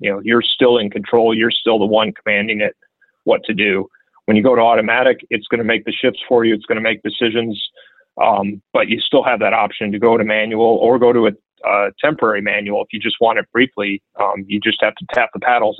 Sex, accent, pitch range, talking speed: male, American, 105-115 Hz, 245 wpm